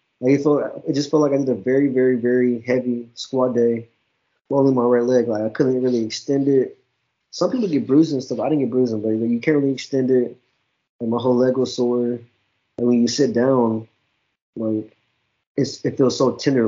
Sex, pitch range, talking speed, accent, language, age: male, 115-140 Hz, 220 wpm, American, English, 20-39